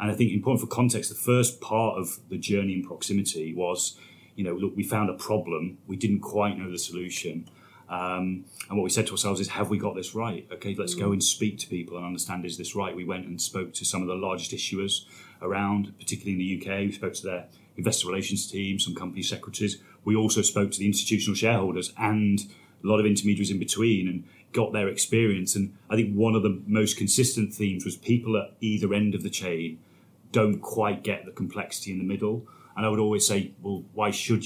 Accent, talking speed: British, 225 wpm